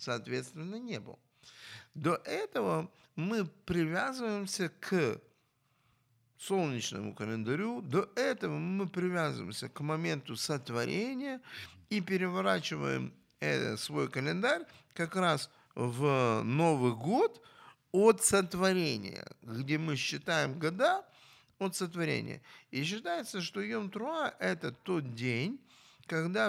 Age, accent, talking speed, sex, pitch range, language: 50-69, native, 95 wpm, male, 135-225 Hz, Ukrainian